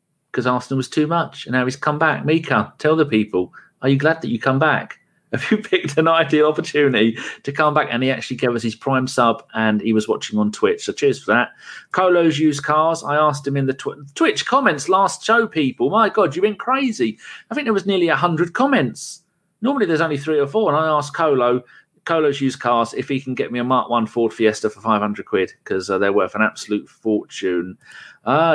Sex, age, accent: male, 40-59, British